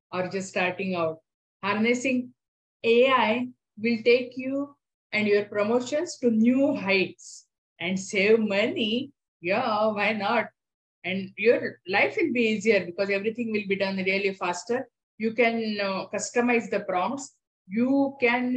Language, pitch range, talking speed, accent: English, 195-245 Hz, 135 wpm, Indian